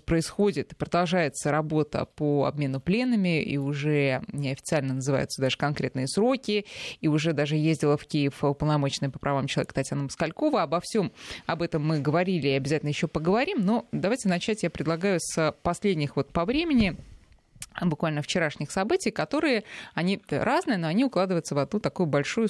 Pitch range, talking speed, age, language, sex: 150-205 Hz, 155 wpm, 20-39, Russian, female